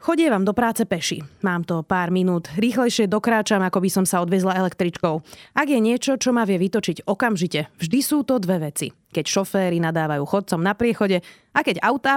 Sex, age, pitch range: female, 30-49, 170-225 Hz